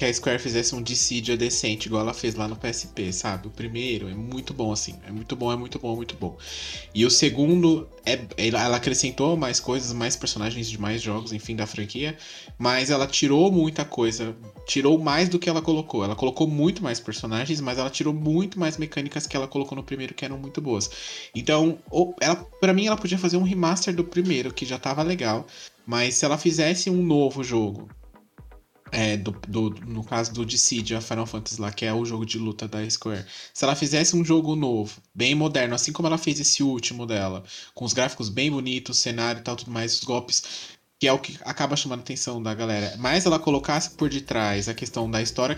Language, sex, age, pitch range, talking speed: Portuguese, male, 20-39, 115-150 Hz, 210 wpm